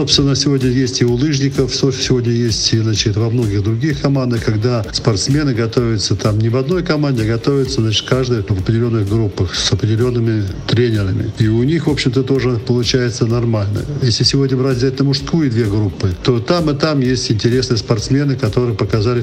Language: Russian